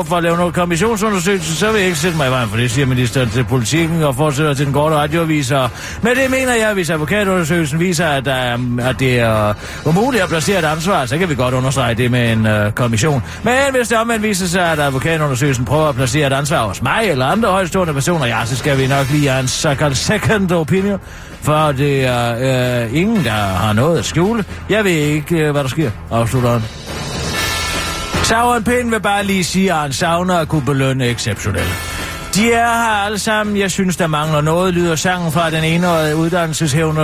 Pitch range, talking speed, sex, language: 130-185 Hz, 210 wpm, male, Danish